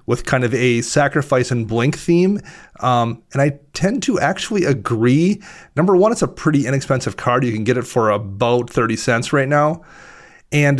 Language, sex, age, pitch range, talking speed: English, male, 30-49, 125-150 Hz, 185 wpm